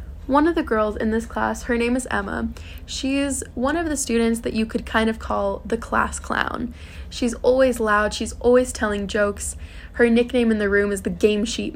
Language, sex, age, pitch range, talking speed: English, female, 20-39, 205-245 Hz, 215 wpm